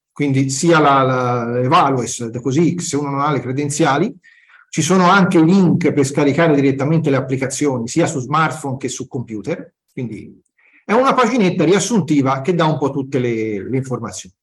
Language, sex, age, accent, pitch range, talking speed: Italian, male, 40-59, native, 130-170 Hz, 170 wpm